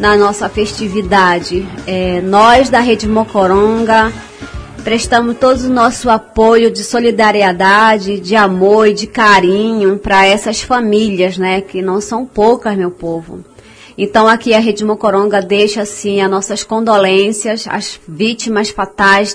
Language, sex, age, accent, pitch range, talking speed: Portuguese, female, 20-39, Brazilian, 205-260 Hz, 130 wpm